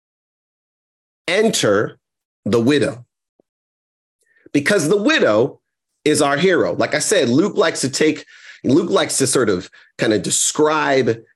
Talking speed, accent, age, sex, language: 125 wpm, American, 40-59, male, English